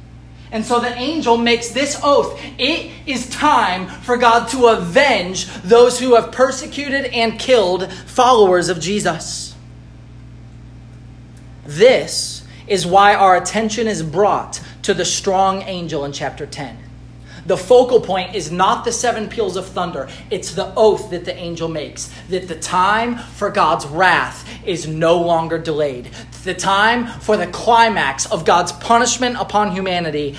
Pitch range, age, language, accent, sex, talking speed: 120-205 Hz, 30-49, English, American, male, 145 wpm